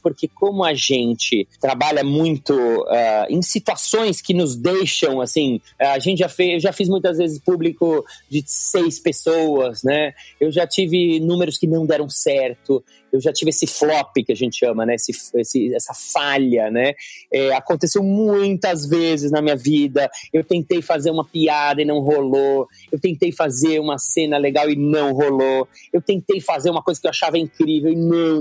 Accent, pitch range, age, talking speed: Brazilian, 140-180 Hz, 30-49, 175 wpm